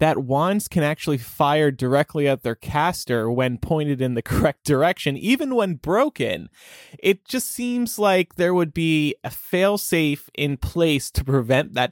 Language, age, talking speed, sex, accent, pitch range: English, 20-39, 160 wpm, male, American, 120-180 Hz